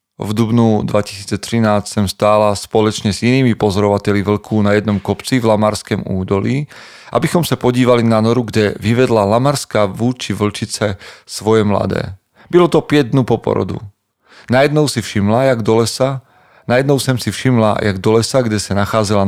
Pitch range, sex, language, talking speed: 105-125 Hz, male, Slovak, 140 wpm